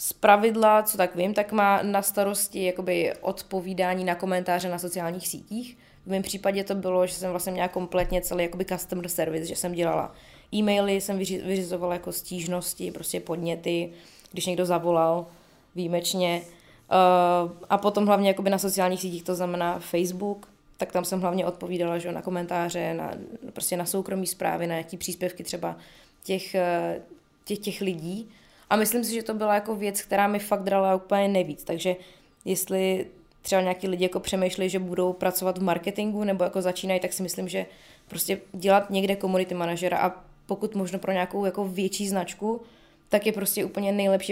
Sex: female